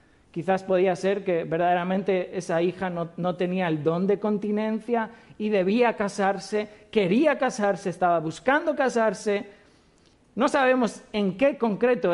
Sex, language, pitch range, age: male, Spanish, 195-260 Hz, 50-69